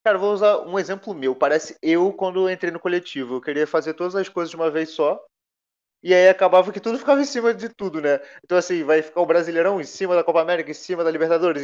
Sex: male